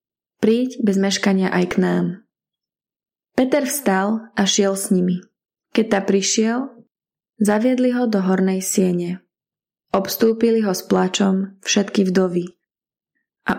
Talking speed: 120 wpm